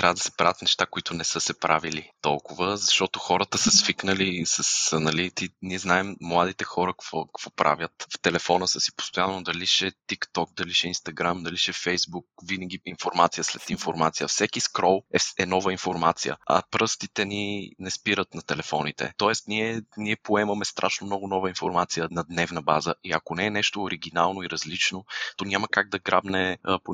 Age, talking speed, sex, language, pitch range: 20-39, 180 wpm, male, Bulgarian, 85-95 Hz